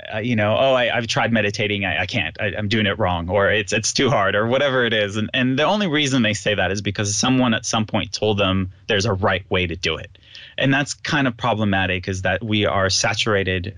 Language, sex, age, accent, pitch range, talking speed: English, male, 30-49, American, 105-130 Hz, 255 wpm